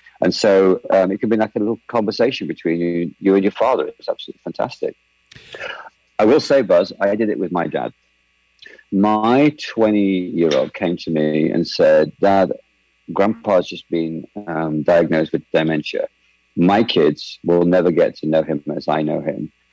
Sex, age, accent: male, 40-59, British